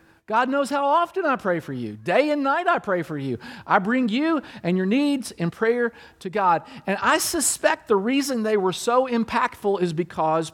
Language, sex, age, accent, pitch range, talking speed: English, male, 50-69, American, 170-250 Hz, 205 wpm